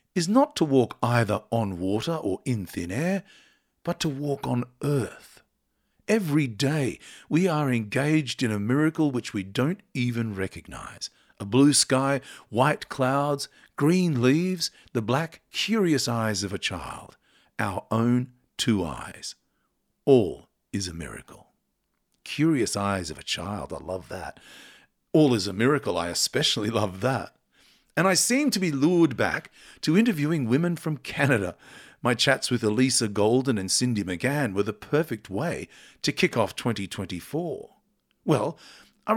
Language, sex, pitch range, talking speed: English, male, 110-155 Hz, 150 wpm